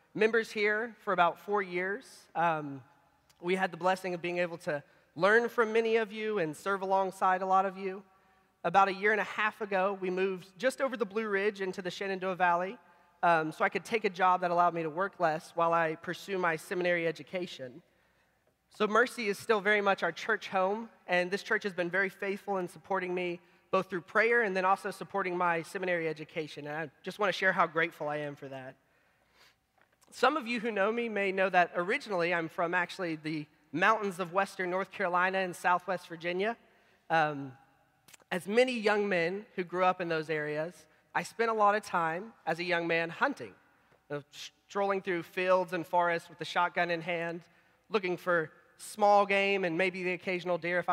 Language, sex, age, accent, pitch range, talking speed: English, male, 30-49, American, 170-200 Hz, 200 wpm